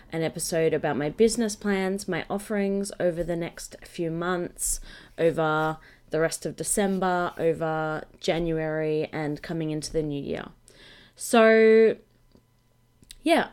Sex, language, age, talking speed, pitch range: female, English, 20-39, 125 wpm, 160-205 Hz